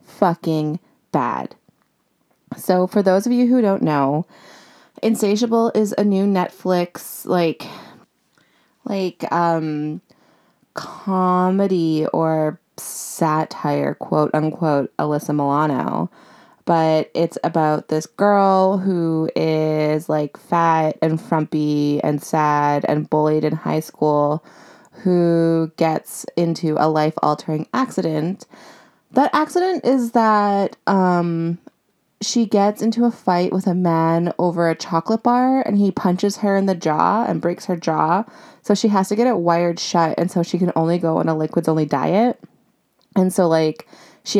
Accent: American